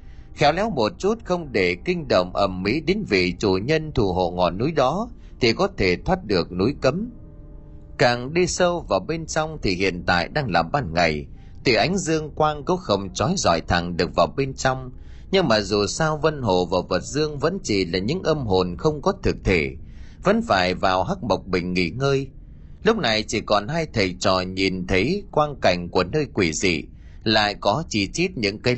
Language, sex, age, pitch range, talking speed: Vietnamese, male, 30-49, 95-155 Hz, 210 wpm